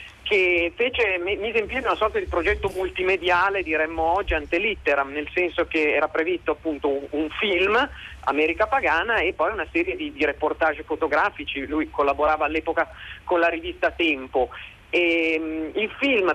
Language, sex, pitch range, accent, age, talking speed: Italian, male, 155-200 Hz, native, 40-59, 155 wpm